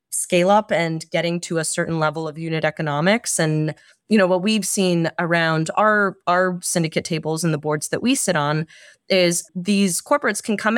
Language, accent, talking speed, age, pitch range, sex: English, American, 190 wpm, 30-49, 160-195 Hz, female